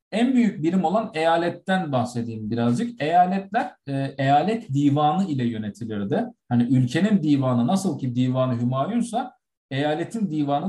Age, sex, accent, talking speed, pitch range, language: 50-69, male, native, 125 wpm, 125-200 Hz, Turkish